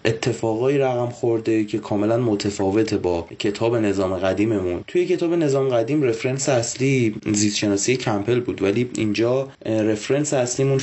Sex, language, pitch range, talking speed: male, Persian, 105-130 Hz, 125 wpm